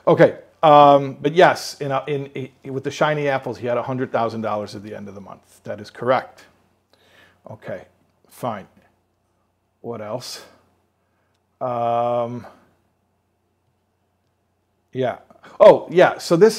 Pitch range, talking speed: 115-150 Hz, 135 wpm